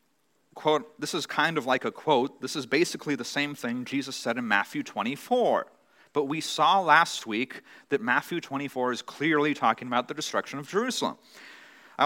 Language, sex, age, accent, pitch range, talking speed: English, male, 40-59, American, 130-170 Hz, 180 wpm